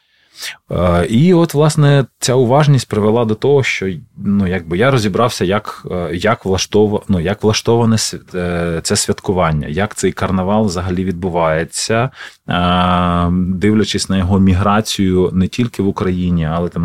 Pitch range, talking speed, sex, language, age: 85-110 Hz, 120 wpm, male, Ukrainian, 20-39